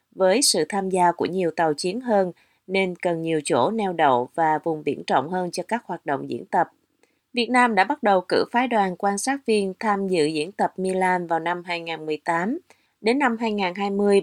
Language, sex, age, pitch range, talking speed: Vietnamese, female, 20-39, 170-210 Hz, 205 wpm